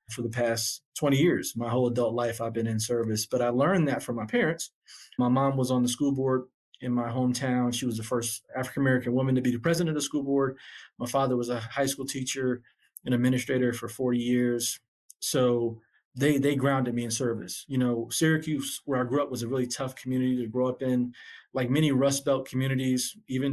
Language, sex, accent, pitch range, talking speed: English, male, American, 125-135 Hz, 215 wpm